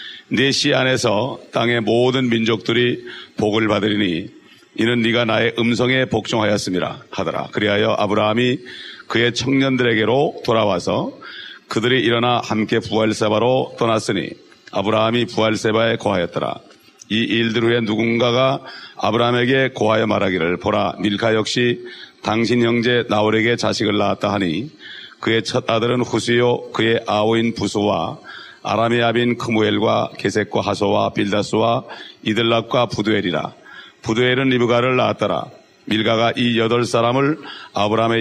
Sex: male